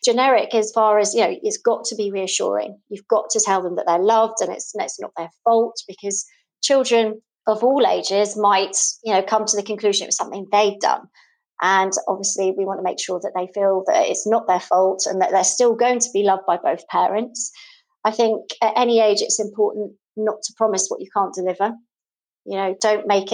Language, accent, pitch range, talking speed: English, British, 195-230 Hz, 220 wpm